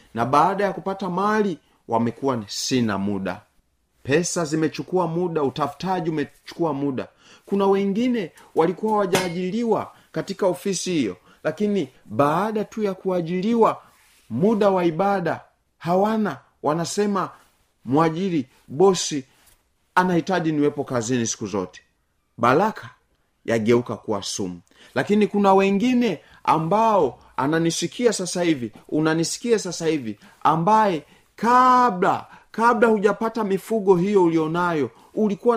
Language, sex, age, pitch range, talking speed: Swahili, male, 40-59, 140-210 Hz, 105 wpm